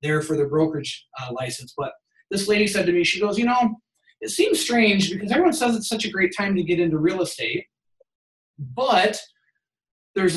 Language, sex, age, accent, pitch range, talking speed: English, male, 30-49, American, 150-215 Hz, 195 wpm